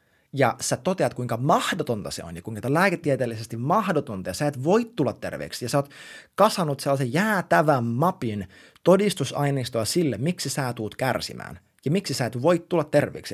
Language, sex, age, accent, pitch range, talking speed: Finnish, male, 30-49, native, 125-185 Hz, 165 wpm